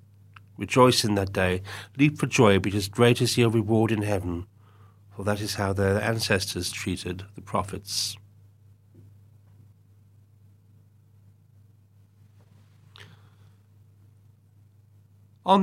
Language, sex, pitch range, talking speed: English, male, 100-110 Hz, 90 wpm